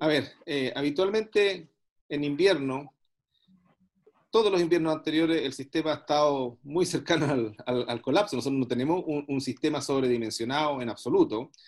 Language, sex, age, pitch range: Spanish, male, 40-59, 135-180 Hz